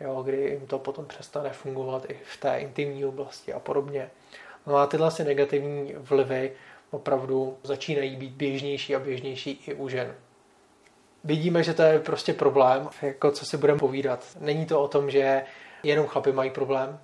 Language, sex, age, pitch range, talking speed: Czech, male, 30-49, 135-145 Hz, 175 wpm